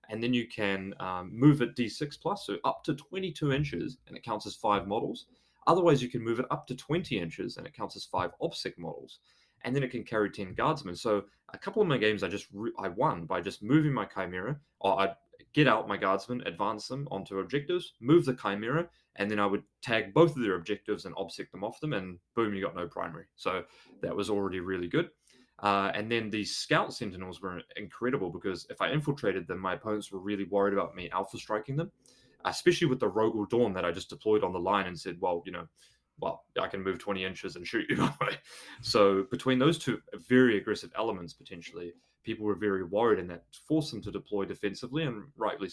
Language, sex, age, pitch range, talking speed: English, male, 20-39, 100-135 Hz, 220 wpm